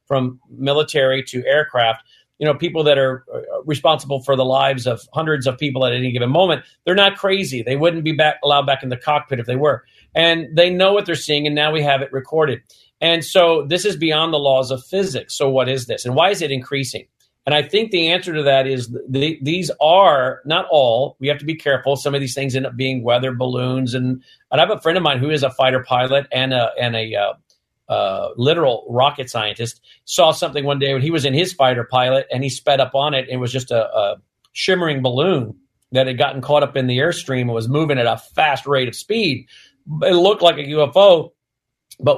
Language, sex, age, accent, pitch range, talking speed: English, male, 40-59, American, 130-155 Hz, 230 wpm